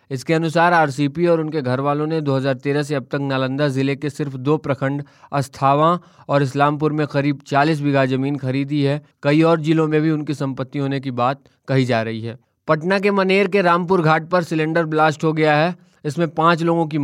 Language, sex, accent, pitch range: Hindi, male, native, 140-170 Hz